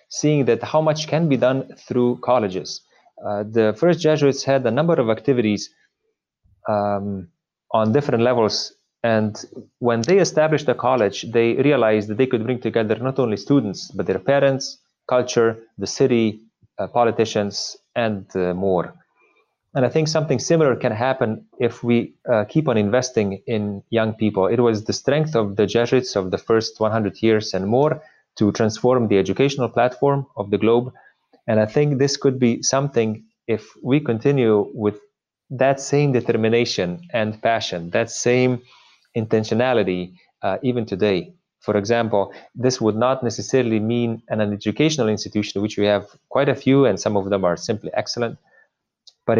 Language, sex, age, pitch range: English, male, 30-49, 105-135 Hz